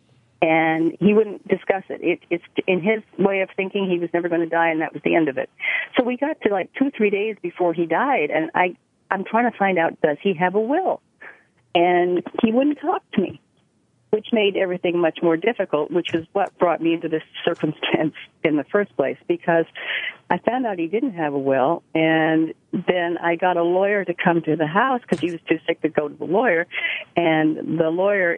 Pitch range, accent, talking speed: 160-215 Hz, American, 220 wpm